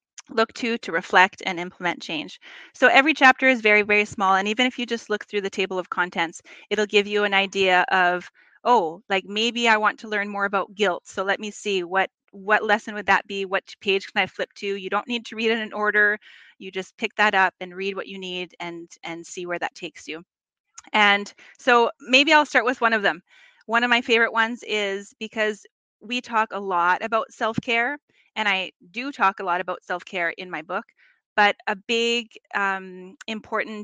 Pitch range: 190-225 Hz